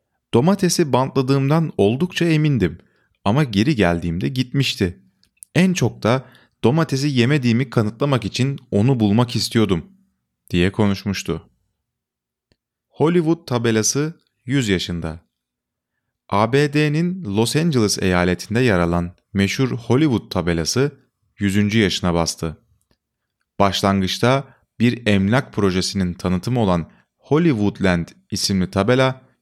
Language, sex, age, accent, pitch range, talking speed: Turkish, male, 30-49, native, 90-125 Hz, 90 wpm